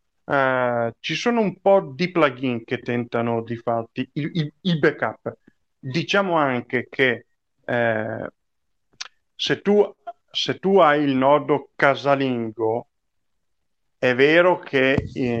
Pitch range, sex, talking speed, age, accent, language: 115-135 Hz, male, 120 wpm, 40-59, native, Italian